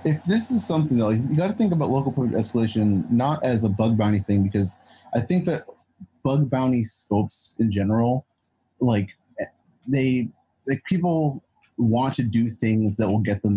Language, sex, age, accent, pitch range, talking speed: English, male, 30-49, American, 105-130 Hz, 175 wpm